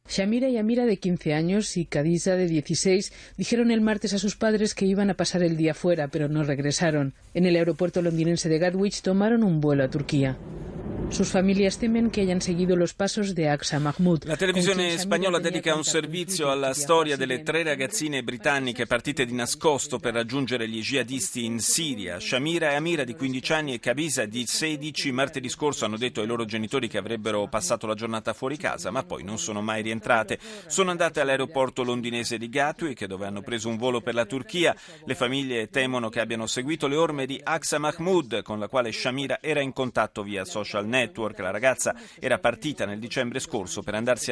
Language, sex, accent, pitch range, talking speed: Italian, male, native, 115-160 Hz, 180 wpm